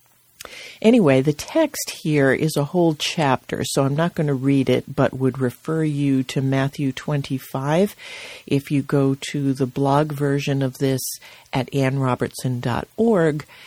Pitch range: 135-165 Hz